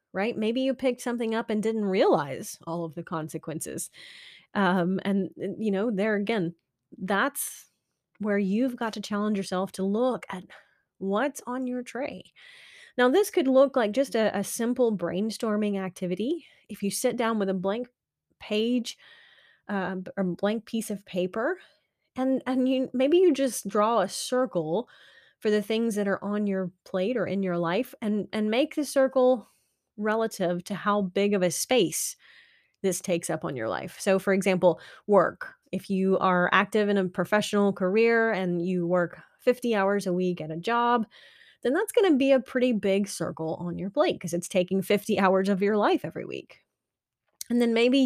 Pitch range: 190-245 Hz